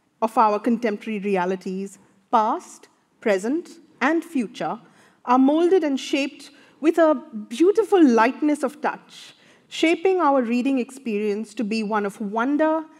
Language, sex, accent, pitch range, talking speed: English, female, Indian, 205-290 Hz, 125 wpm